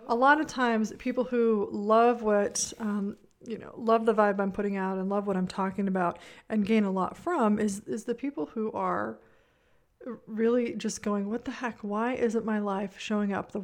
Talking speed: 205 wpm